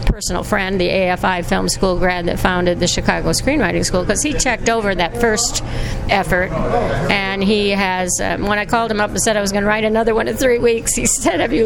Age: 60-79